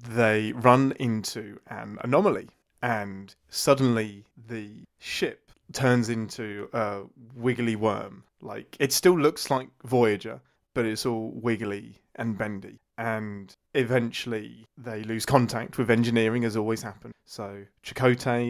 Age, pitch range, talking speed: 30-49, 110-125 Hz, 125 wpm